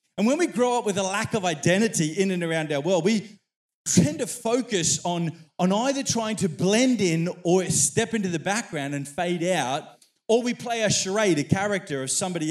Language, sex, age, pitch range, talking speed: English, male, 40-59, 165-230 Hz, 205 wpm